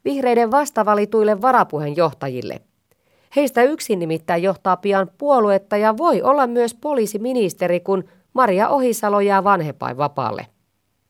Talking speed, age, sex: 105 wpm, 30-49, female